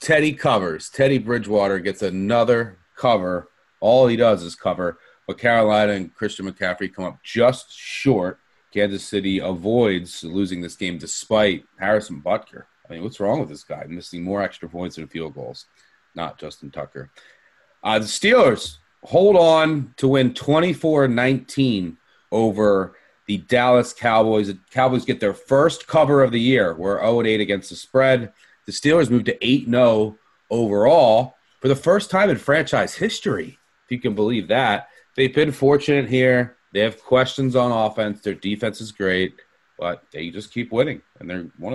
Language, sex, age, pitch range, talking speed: English, male, 30-49, 100-130 Hz, 165 wpm